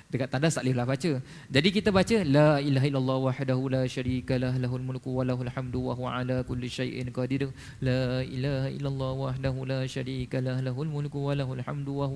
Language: Malay